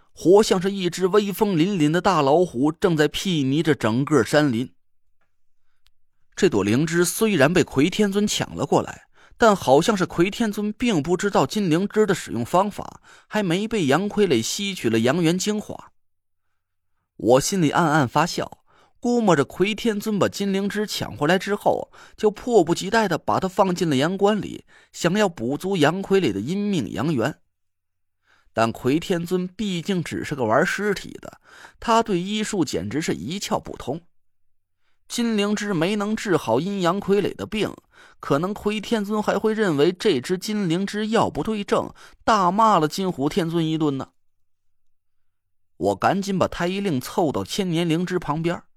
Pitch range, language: 125-205 Hz, Chinese